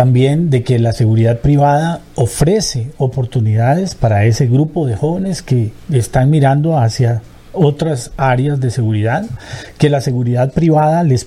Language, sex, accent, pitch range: Spanish, male, Colombian, 120-150 Hz